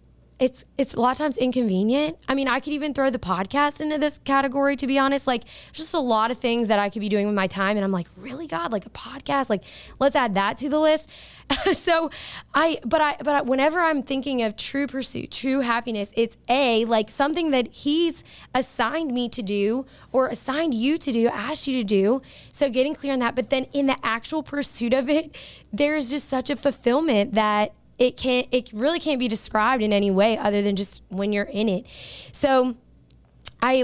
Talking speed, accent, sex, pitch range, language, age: 215 wpm, American, female, 210-275 Hz, English, 20-39